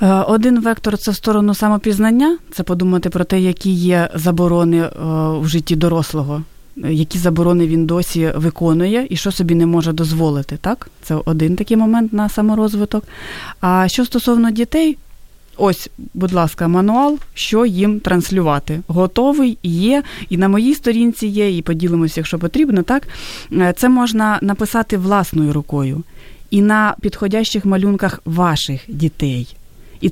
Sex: female